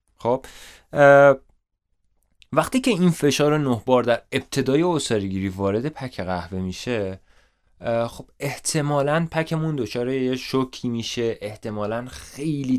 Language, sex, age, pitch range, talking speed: Persian, male, 20-39, 105-145 Hz, 110 wpm